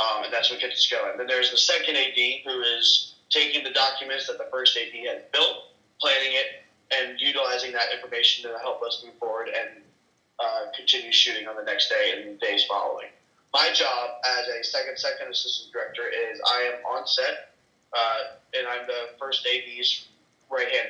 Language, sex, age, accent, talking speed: English, male, 30-49, American, 185 wpm